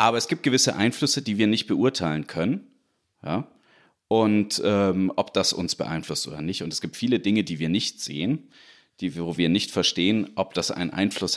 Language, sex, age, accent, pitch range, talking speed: German, male, 40-59, German, 85-115 Hz, 185 wpm